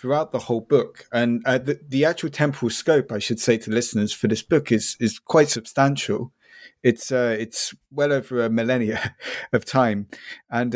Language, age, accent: English, 30-49, British